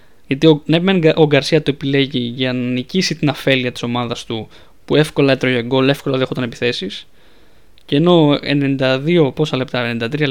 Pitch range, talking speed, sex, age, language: 130-165 Hz, 175 wpm, male, 20-39, Greek